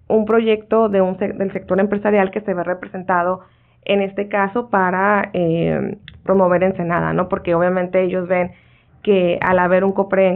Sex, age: female, 20-39